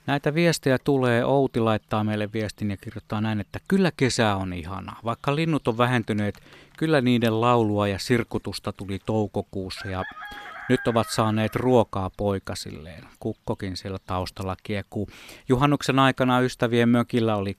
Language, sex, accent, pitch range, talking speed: Finnish, male, native, 100-125 Hz, 140 wpm